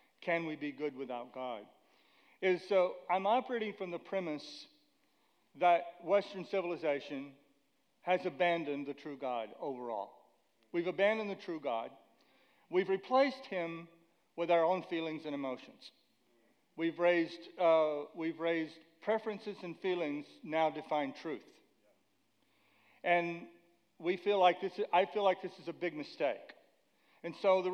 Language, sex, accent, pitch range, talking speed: English, male, American, 155-195 Hz, 135 wpm